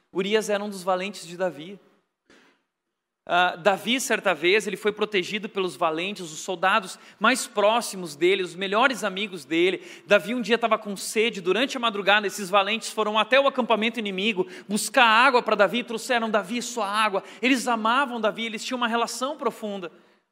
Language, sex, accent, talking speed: Portuguese, male, Brazilian, 165 wpm